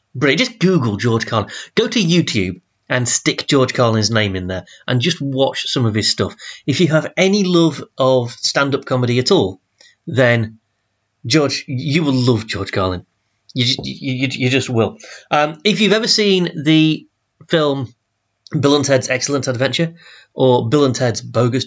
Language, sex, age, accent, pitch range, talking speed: English, male, 30-49, British, 115-155 Hz, 175 wpm